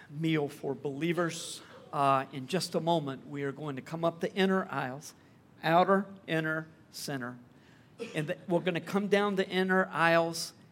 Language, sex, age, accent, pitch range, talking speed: English, male, 50-69, American, 135-175 Hz, 160 wpm